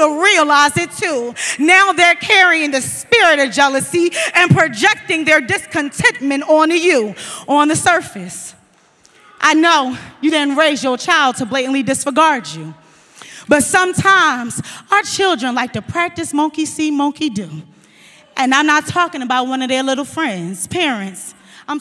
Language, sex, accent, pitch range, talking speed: English, female, American, 255-330 Hz, 150 wpm